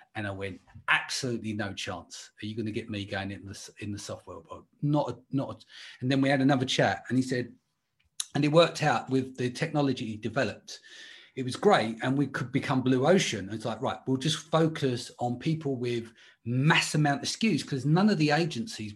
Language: English